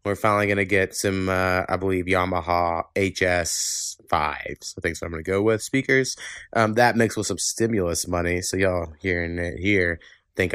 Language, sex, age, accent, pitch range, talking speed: English, male, 20-39, American, 95-110 Hz, 190 wpm